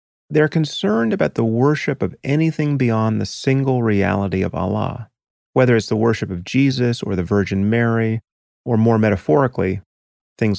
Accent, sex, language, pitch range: American, male, English, 100-125 Hz